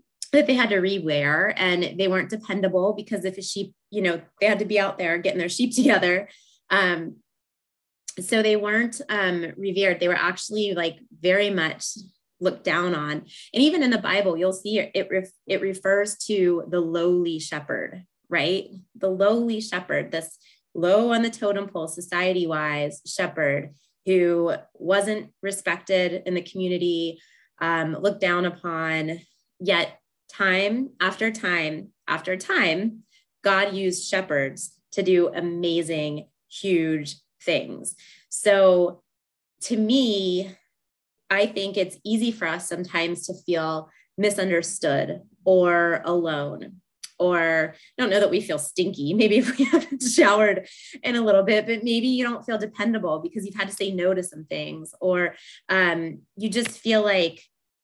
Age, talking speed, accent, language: 20-39, 150 wpm, American, English